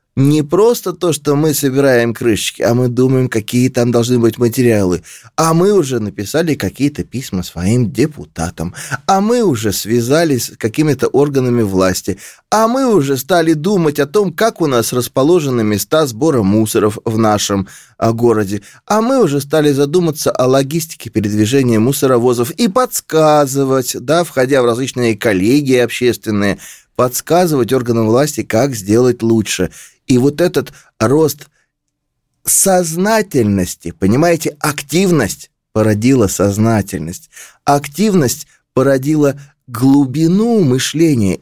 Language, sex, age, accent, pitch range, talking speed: Russian, male, 20-39, native, 115-155 Hz, 120 wpm